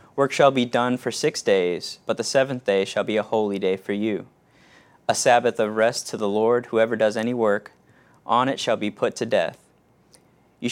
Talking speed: 205 wpm